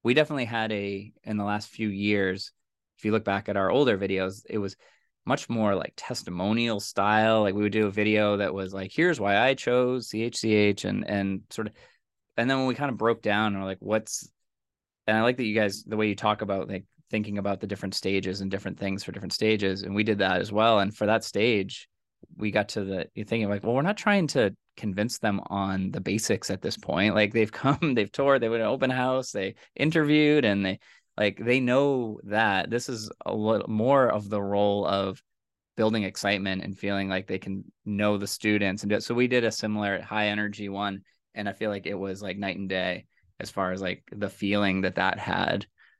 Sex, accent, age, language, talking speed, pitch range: male, American, 20-39, English, 225 wpm, 100-110 Hz